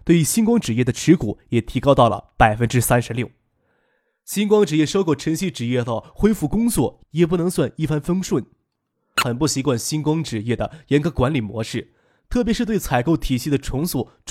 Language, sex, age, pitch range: Chinese, male, 20-39, 125-175 Hz